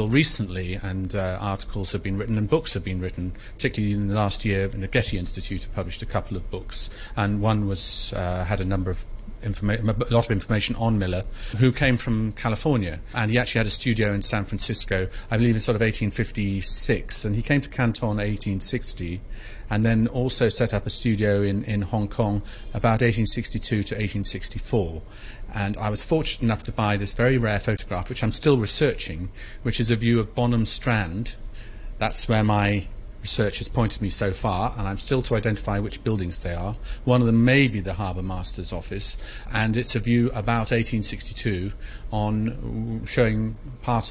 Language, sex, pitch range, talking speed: English, male, 100-115 Hz, 190 wpm